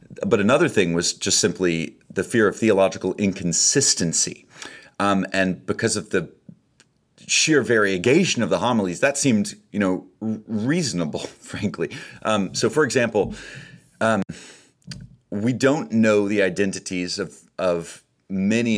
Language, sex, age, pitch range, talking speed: English, male, 40-59, 90-110 Hz, 130 wpm